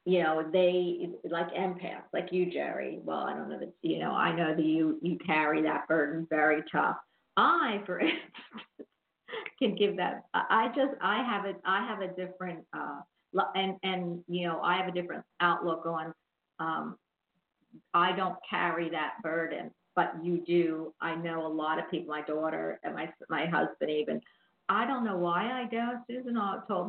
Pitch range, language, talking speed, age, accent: 170-210 Hz, English, 180 wpm, 50-69, American